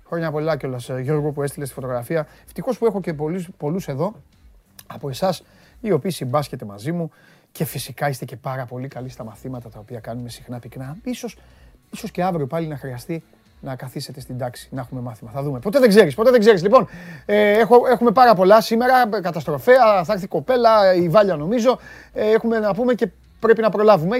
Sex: male